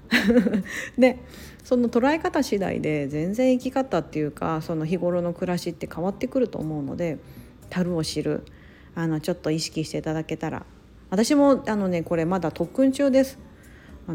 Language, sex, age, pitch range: Japanese, female, 40-59, 160-235 Hz